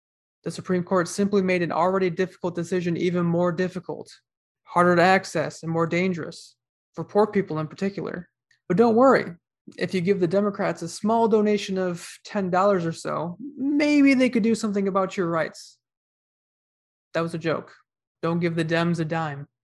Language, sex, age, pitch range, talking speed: English, male, 20-39, 165-195 Hz, 170 wpm